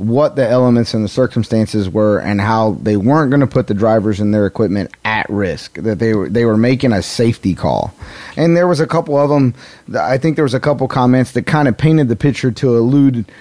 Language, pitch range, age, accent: English, 110-140 Hz, 30-49, American